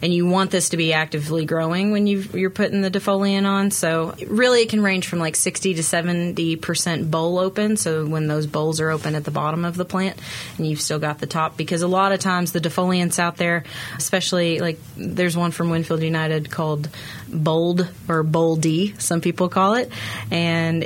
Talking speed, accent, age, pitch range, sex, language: 200 wpm, American, 30-49, 155-180 Hz, female, English